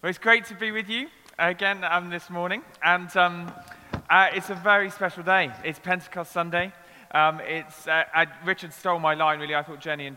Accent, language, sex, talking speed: British, English, male, 205 wpm